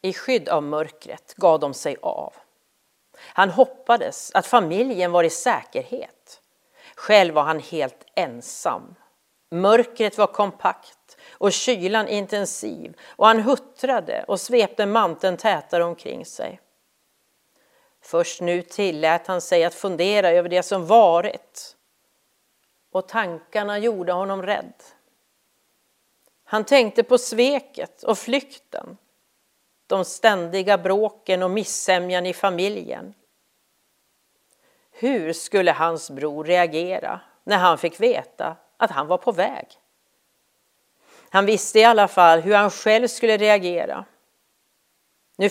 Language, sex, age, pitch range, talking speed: Swedish, female, 40-59, 170-230 Hz, 115 wpm